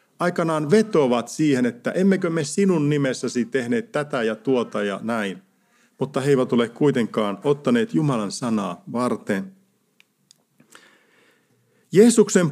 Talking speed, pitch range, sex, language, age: 115 wpm, 130-195 Hz, male, Finnish, 50-69